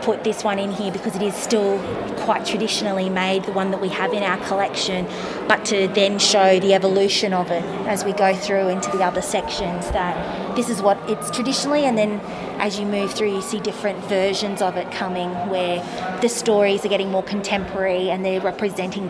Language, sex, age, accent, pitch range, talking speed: English, female, 30-49, Australian, 190-215 Hz, 205 wpm